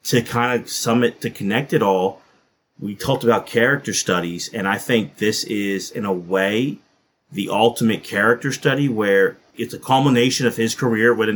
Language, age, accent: English, 30-49, American